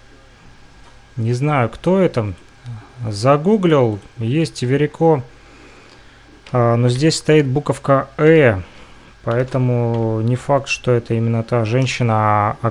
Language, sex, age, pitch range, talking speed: Russian, male, 30-49, 115-135 Hz, 100 wpm